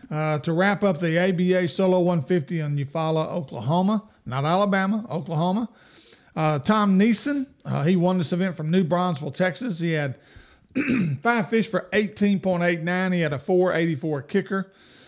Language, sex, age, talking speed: English, male, 50-69, 145 wpm